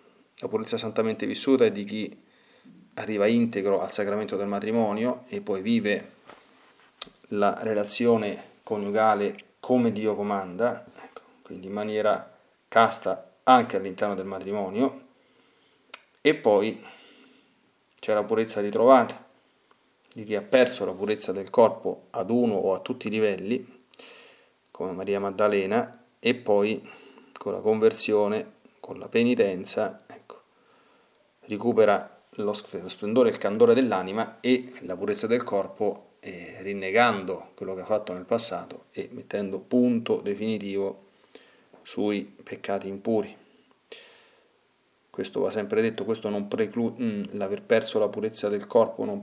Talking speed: 125 wpm